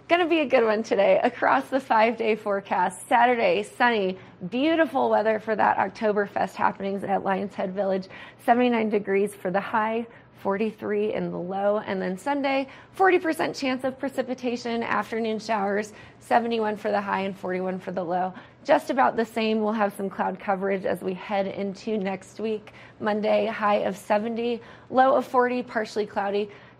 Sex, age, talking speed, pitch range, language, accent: female, 20-39, 170 wpm, 200-240 Hz, English, American